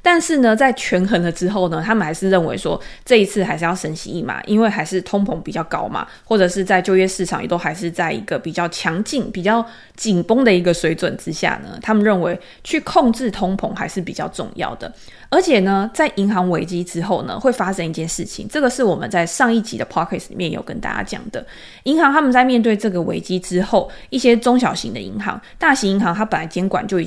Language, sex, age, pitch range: Chinese, female, 20-39, 175-235 Hz